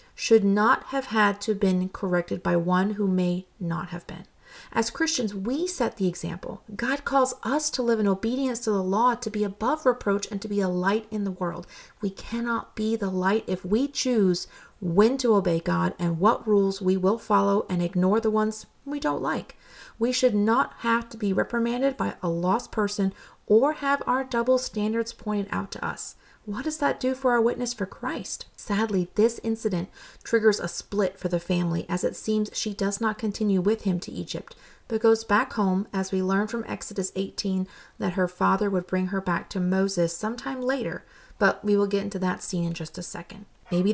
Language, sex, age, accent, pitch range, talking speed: English, female, 40-59, American, 185-230 Hz, 205 wpm